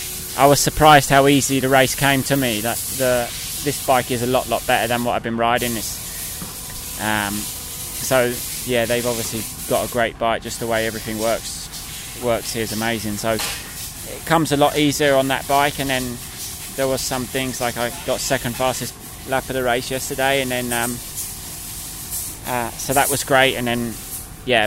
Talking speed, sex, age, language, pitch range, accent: 190 wpm, male, 20-39, English, 115-140 Hz, British